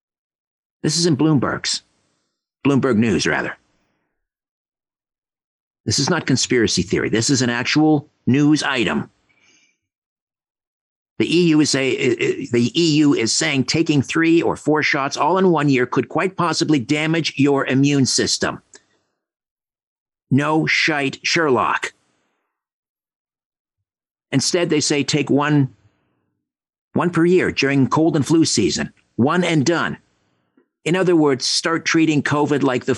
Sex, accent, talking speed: male, American, 120 wpm